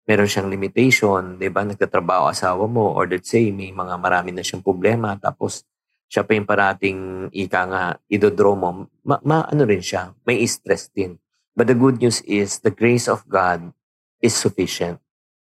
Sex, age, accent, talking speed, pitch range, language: male, 50-69, native, 170 wpm, 95-110 Hz, Filipino